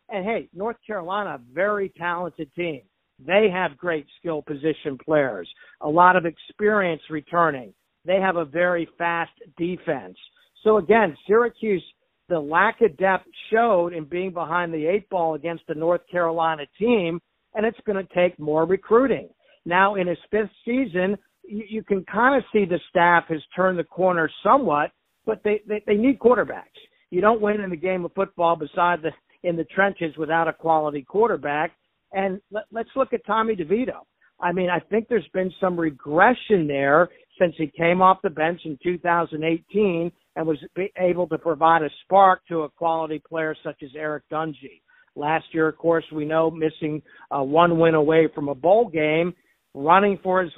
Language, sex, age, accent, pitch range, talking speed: English, male, 50-69, American, 160-195 Hz, 170 wpm